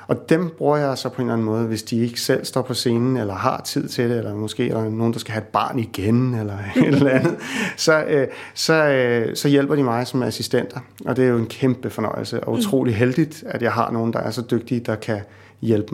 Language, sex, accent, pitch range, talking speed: Danish, male, native, 115-140 Hz, 250 wpm